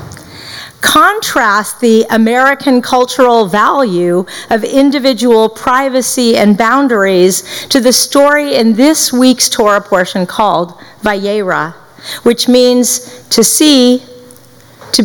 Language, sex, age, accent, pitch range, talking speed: English, female, 50-69, American, 190-255 Hz, 100 wpm